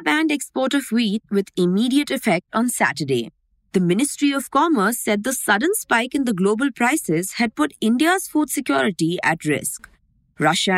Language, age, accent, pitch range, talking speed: English, 20-39, Indian, 185-275 Hz, 160 wpm